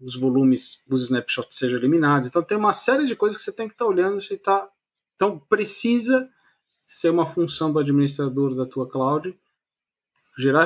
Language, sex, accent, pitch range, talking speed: Portuguese, male, Brazilian, 130-165 Hz, 180 wpm